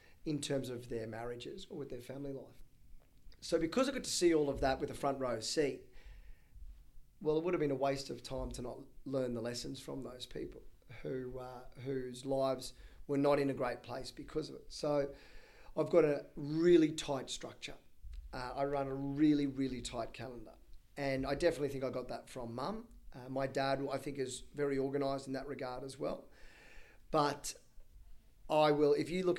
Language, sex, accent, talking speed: English, male, Australian, 200 wpm